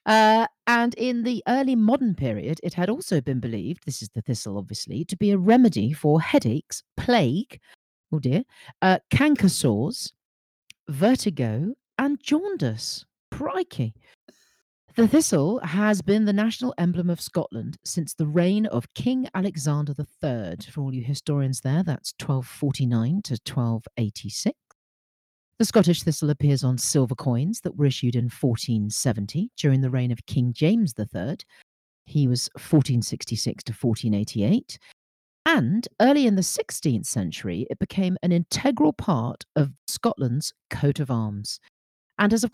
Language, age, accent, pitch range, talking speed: English, 40-59, British, 125-205 Hz, 140 wpm